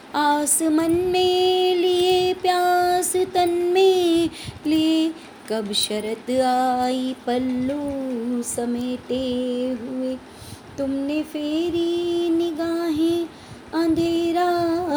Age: 20-39